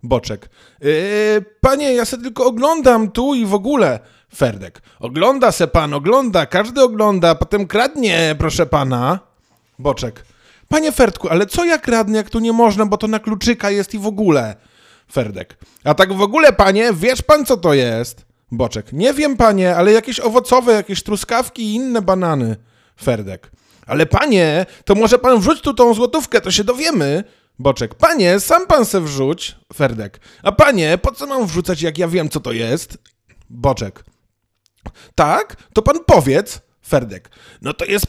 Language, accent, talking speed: Polish, native, 165 wpm